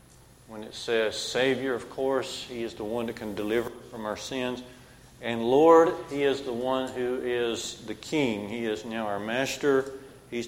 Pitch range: 115-130 Hz